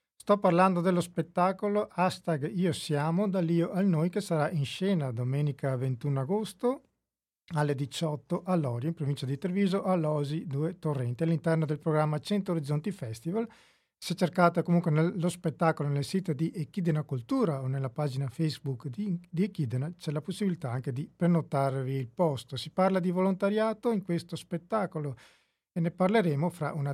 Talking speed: 160 wpm